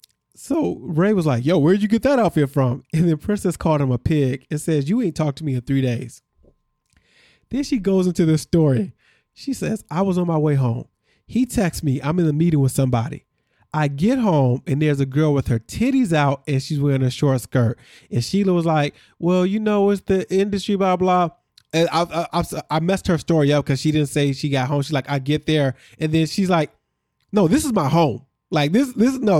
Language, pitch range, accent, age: English, 140-195 Hz, American, 20-39